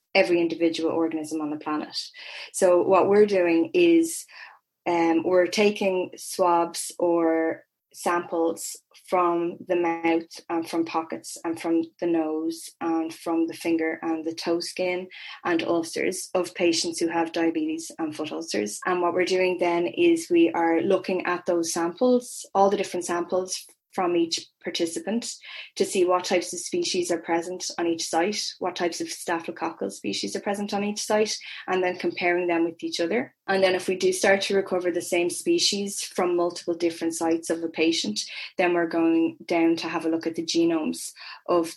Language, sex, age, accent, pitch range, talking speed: English, female, 20-39, Irish, 165-190 Hz, 175 wpm